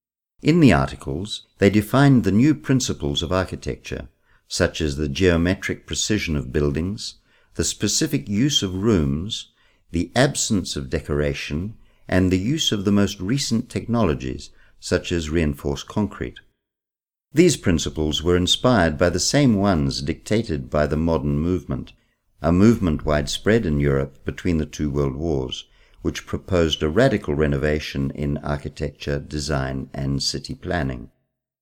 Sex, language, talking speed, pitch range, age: male, Italian, 135 wpm, 75-105 Hz, 50-69